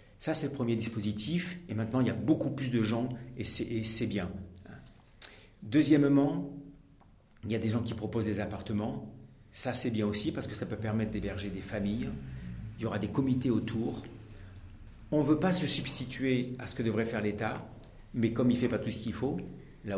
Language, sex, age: French, male, 50-69